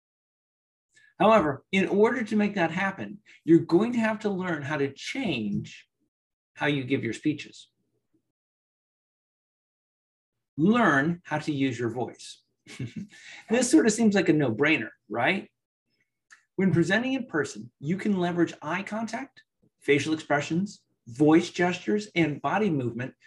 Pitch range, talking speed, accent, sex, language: 140-195 Hz, 135 wpm, American, male, English